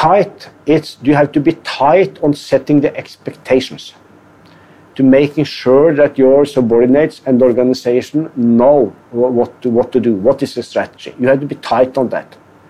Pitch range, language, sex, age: 130-155 Hz, Thai, male, 50-69